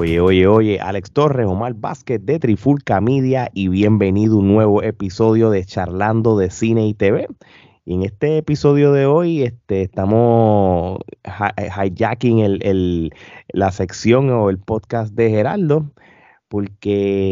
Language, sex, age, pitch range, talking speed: Spanish, male, 30-49, 95-120 Hz, 140 wpm